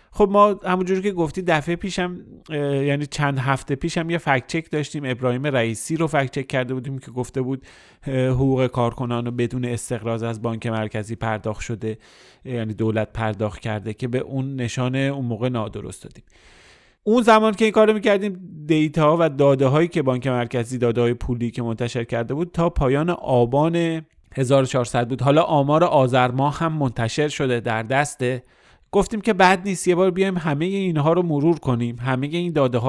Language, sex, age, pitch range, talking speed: Persian, male, 30-49, 120-160 Hz, 175 wpm